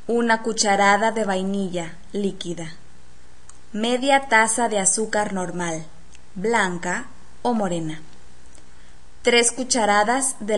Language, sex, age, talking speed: Spanish, female, 20-39, 90 wpm